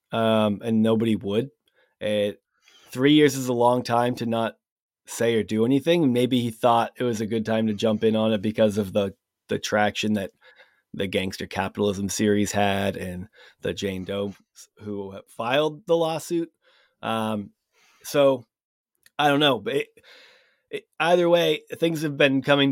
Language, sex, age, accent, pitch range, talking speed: English, male, 30-49, American, 105-140 Hz, 165 wpm